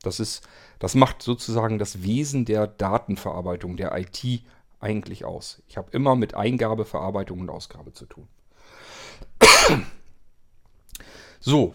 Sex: male